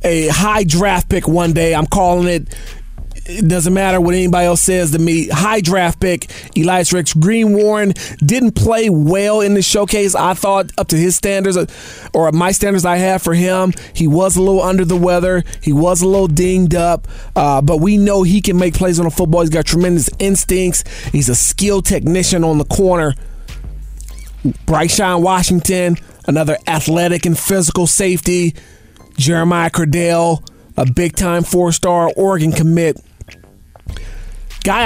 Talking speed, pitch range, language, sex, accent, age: 165 wpm, 150-185 Hz, English, male, American, 30-49